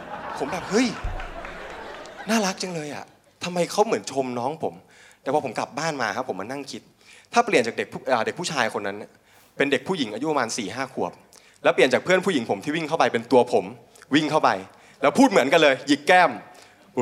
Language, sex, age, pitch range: Thai, male, 20-39, 125-185 Hz